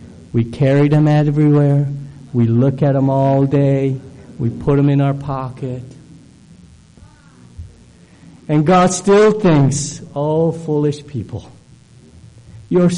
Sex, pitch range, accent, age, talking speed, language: male, 130-175 Hz, American, 50-69, 110 wpm, English